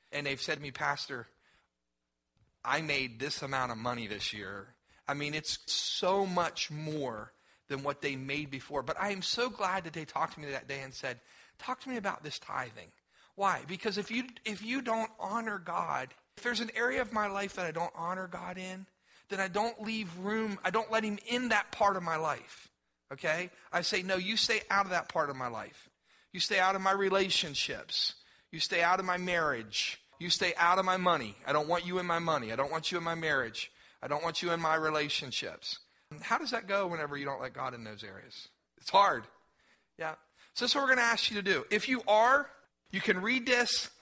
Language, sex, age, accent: English, male, 40-59, American